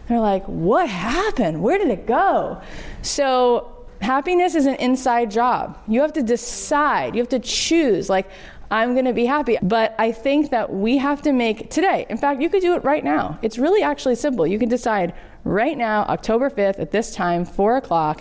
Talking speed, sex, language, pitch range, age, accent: 200 wpm, female, English, 200-265 Hz, 20-39, American